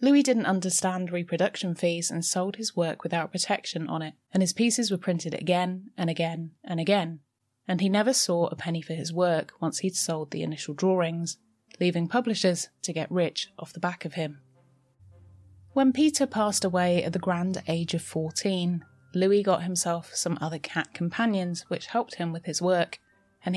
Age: 20-39